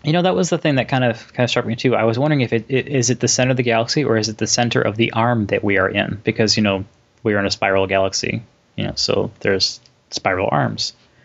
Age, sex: 20-39, male